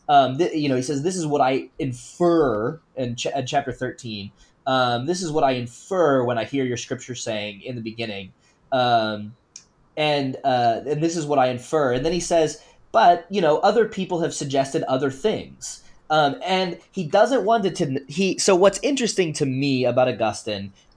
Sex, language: male, English